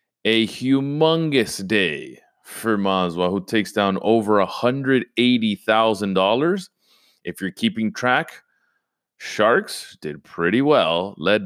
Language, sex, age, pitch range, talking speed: English, male, 30-49, 85-115 Hz, 100 wpm